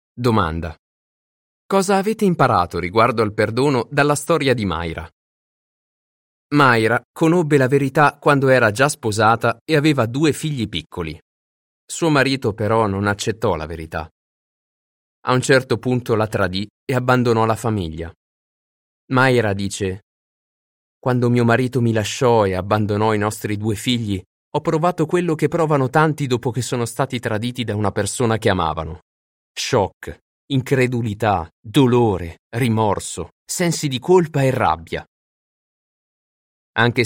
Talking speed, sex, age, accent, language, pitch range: 130 wpm, male, 30-49, native, Italian, 100-135 Hz